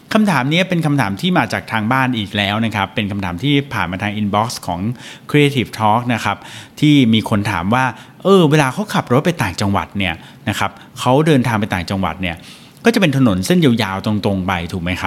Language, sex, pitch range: Thai, male, 100-145 Hz